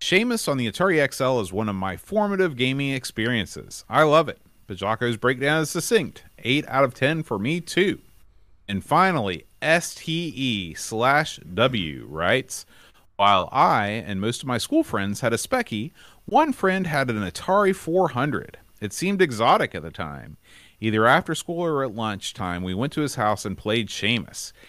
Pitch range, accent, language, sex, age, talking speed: 100-150 Hz, American, English, male, 30-49, 170 wpm